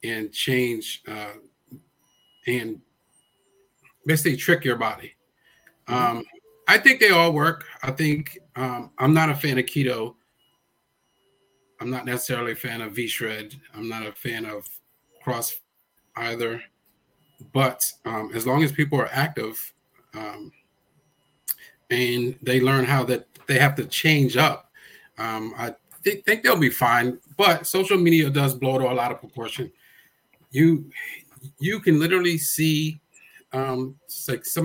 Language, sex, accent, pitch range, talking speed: English, male, American, 125-155 Hz, 140 wpm